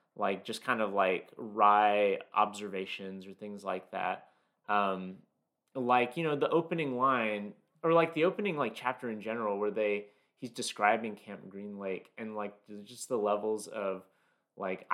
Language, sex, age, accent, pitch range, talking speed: English, male, 30-49, American, 100-125 Hz, 160 wpm